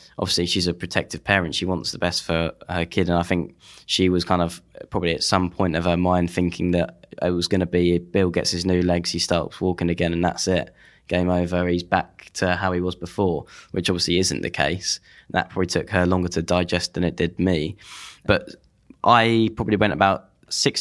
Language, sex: English, male